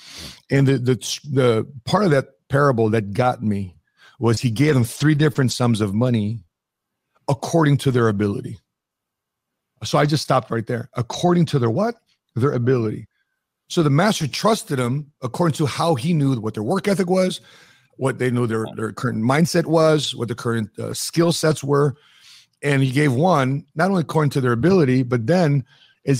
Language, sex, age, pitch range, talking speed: English, male, 40-59, 125-160 Hz, 180 wpm